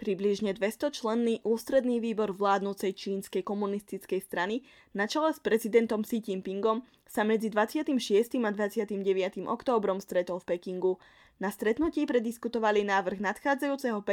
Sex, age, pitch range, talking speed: female, 10-29, 190-240 Hz, 125 wpm